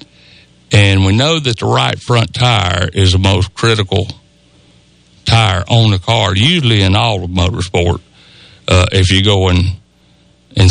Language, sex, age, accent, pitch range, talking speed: English, male, 60-79, American, 95-130 Hz, 145 wpm